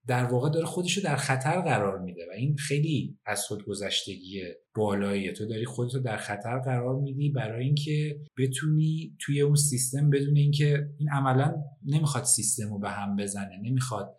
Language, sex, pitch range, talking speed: Persian, male, 110-145 Hz, 165 wpm